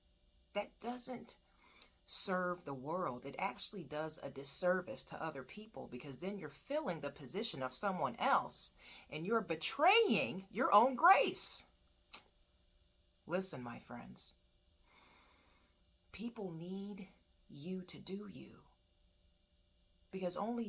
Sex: female